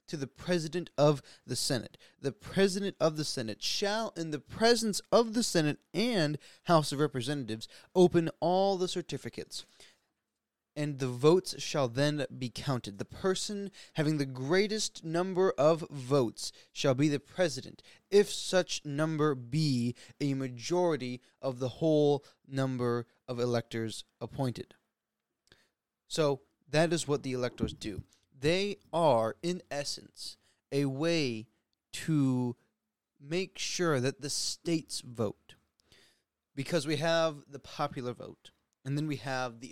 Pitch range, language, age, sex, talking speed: 130-170 Hz, English, 20-39, male, 135 wpm